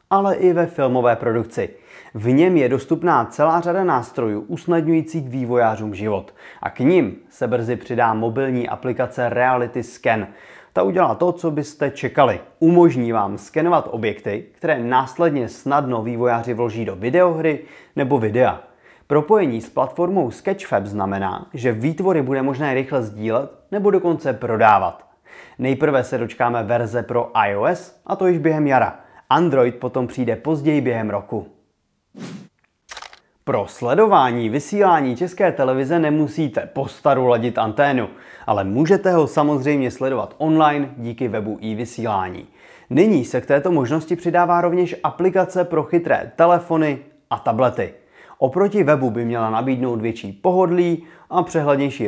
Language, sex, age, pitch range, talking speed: Czech, male, 30-49, 120-165 Hz, 135 wpm